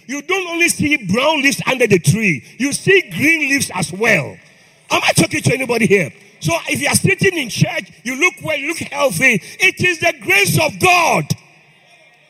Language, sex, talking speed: English, male, 195 wpm